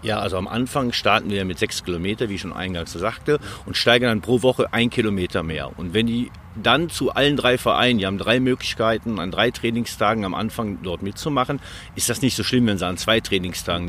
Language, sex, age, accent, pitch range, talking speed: German, male, 50-69, German, 95-120 Hz, 220 wpm